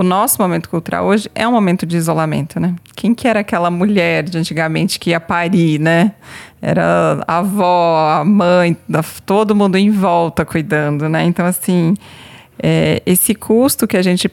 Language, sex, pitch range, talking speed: Portuguese, female, 165-200 Hz, 170 wpm